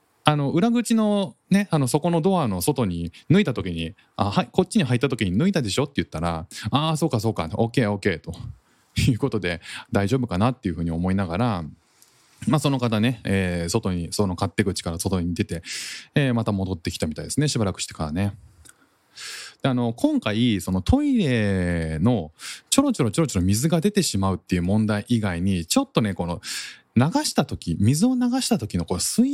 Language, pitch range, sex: Japanese, 95-150 Hz, male